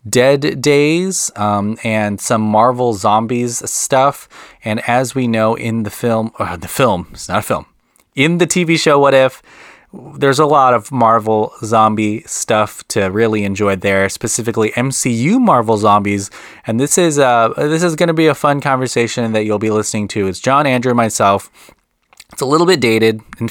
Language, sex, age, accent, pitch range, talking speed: English, male, 20-39, American, 105-135 Hz, 175 wpm